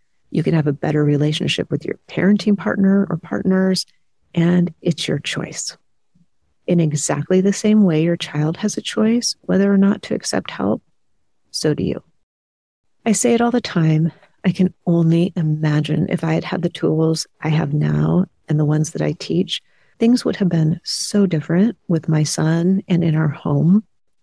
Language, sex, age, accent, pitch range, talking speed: English, female, 40-59, American, 160-195 Hz, 180 wpm